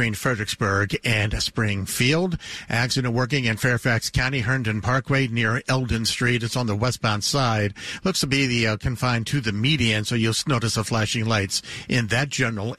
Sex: male